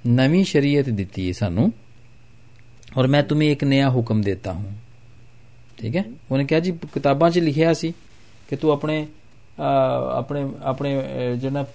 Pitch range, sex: 115-145 Hz, male